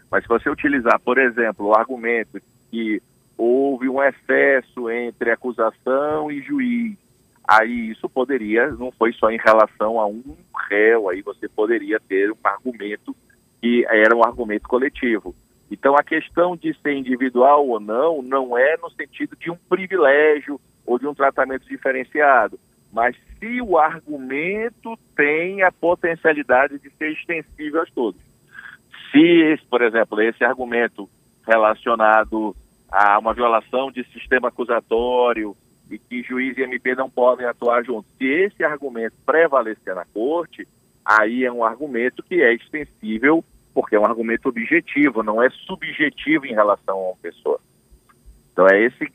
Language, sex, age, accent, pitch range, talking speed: Portuguese, male, 50-69, Brazilian, 115-165 Hz, 145 wpm